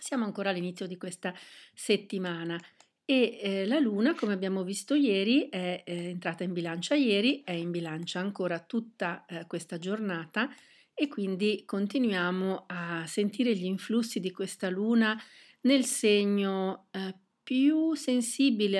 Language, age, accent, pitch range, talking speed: Italian, 40-59, native, 185-220 Hz, 135 wpm